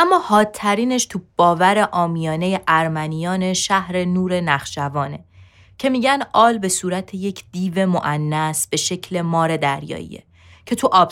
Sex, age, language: female, 20-39, Persian